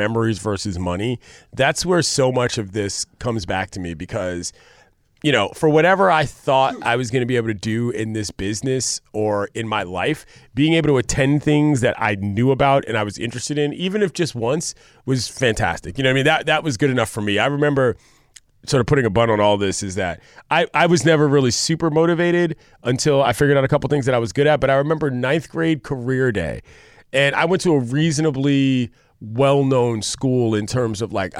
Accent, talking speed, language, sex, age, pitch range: American, 220 wpm, English, male, 30-49, 110-145 Hz